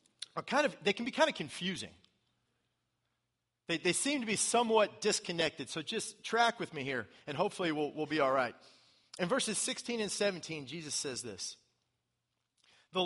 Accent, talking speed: American, 175 wpm